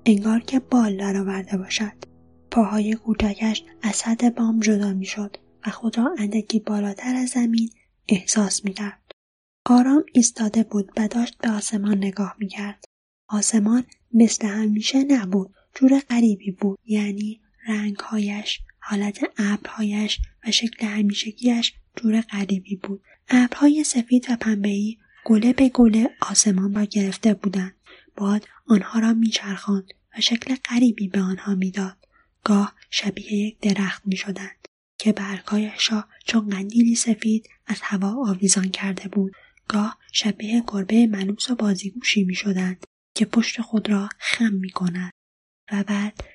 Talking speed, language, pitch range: 130 wpm, Persian, 200-230 Hz